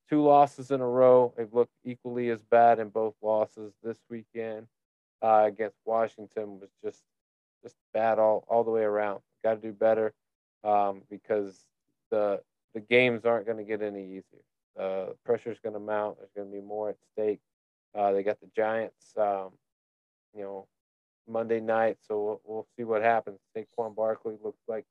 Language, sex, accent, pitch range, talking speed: English, male, American, 105-120 Hz, 180 wpm